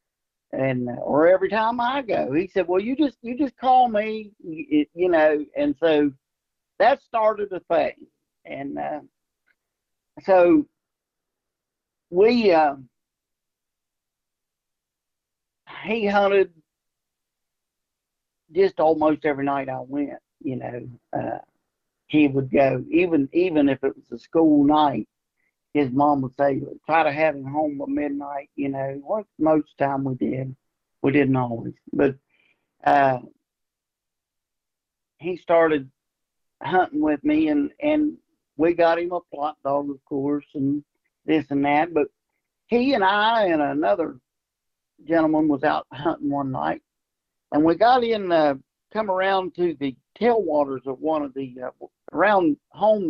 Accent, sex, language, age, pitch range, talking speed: American, male, English, 50-69, 140-215 Hz, 135 wpm